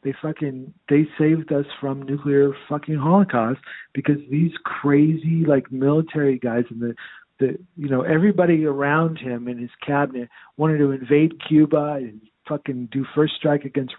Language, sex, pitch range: English, male, 125-165 Hz